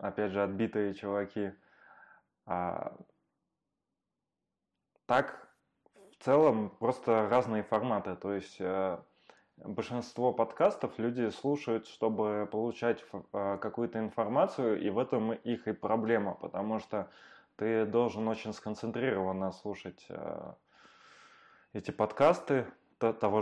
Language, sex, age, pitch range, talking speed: Russian, male, 20-39, 100-115 Hz, 90 wpm